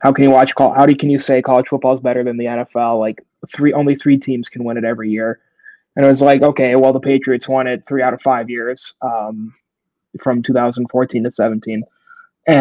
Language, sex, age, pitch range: English, male, 20-39, 125-145 Hz